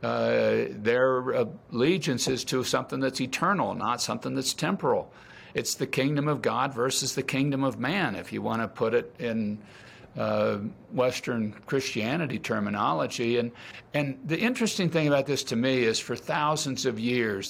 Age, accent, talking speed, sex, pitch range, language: 60-79, American, 160 wpm, male, 115-160 Hz, English